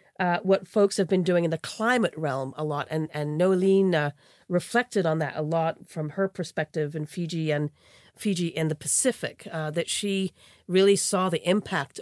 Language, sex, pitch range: English, female, 155-190 Hz